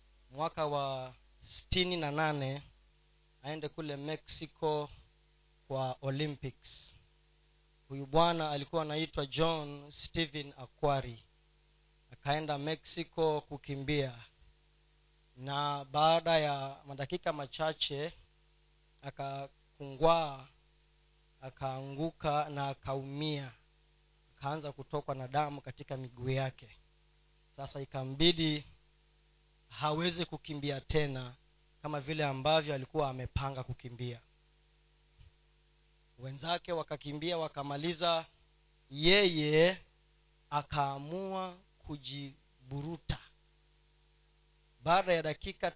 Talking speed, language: 75 wpm, Swahili